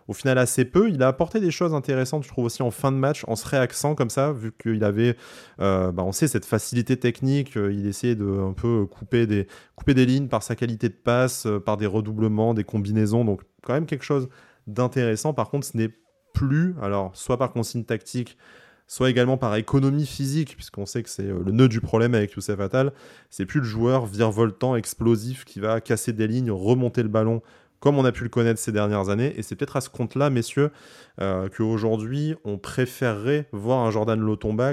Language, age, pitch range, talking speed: French, 20-39, 105-130 Hz, 215 wpm